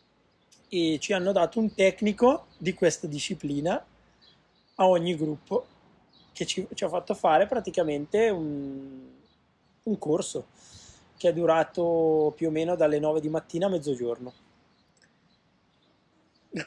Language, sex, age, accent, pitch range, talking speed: Italian, male, 20-39, native, 140-185 Hz, 125 wpm